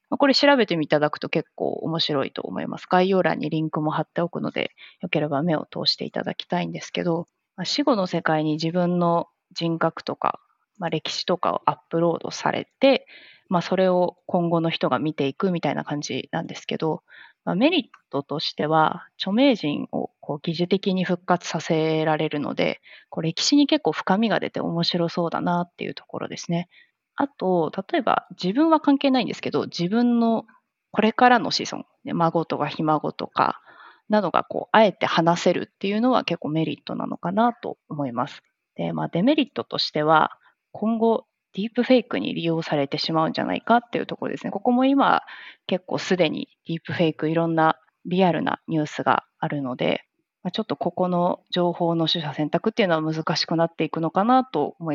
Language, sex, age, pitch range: Japanese, female, 20-39, 160-220 Hz